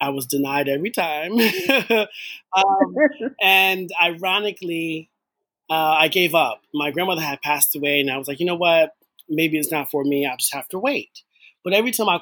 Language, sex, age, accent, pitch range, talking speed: English, male, 30-49, American, 140-180 Hz, 185 wpm